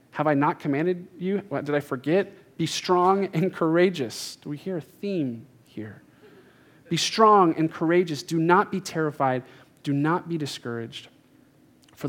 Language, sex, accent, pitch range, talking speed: English, male, American, 135-200 Hz, 160 wpm